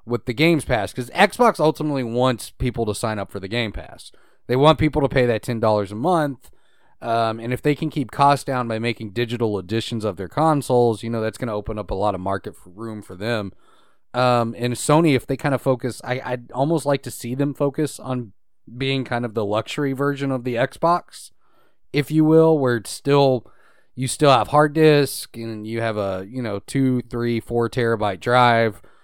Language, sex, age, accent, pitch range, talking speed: English, male, 30-49, American, 110-145 Hz, 210 wpm